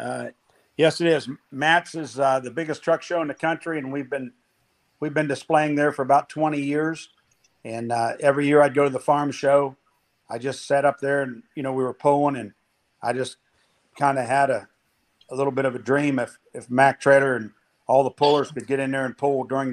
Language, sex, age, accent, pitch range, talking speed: English, male, 50-69, American, 125-145 Hz, 225 wpm